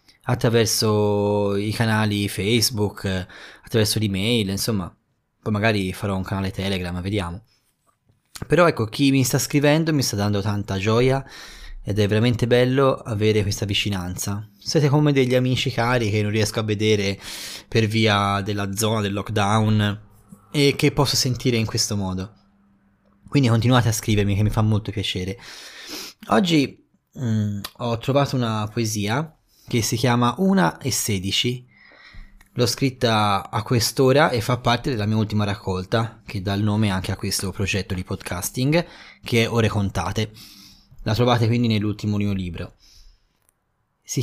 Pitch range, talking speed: 100-125 Hz, 145 wpm